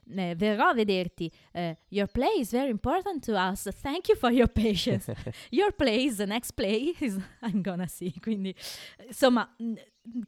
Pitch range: 155-215 Hz